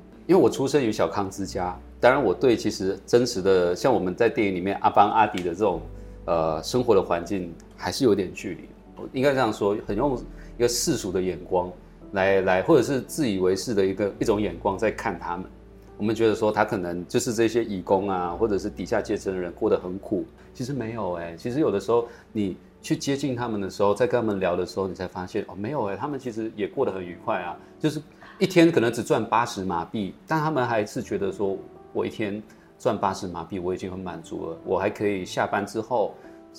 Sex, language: male, Chinese